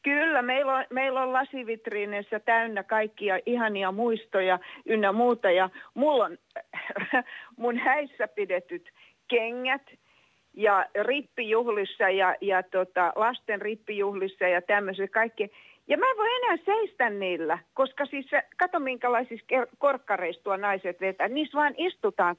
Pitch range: 215-285 Hz